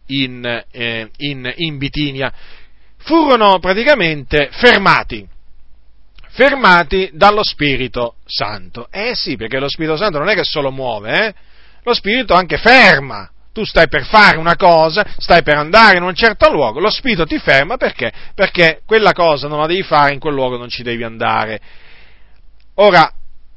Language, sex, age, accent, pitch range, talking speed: Italian, male, 40-59, native, 135-205 Hz, 155 wpm